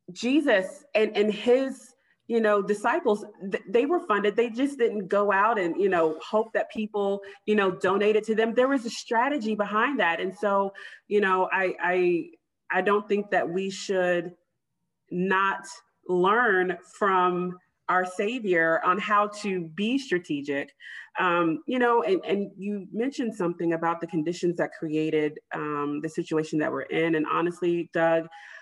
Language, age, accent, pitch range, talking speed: English, 30-49, American, 155-205 Hz, 160 wpm